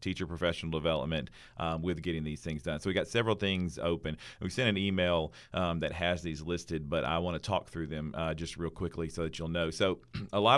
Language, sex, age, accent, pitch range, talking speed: English, male, 40-59, American, 80-95 Hz, 240 wpm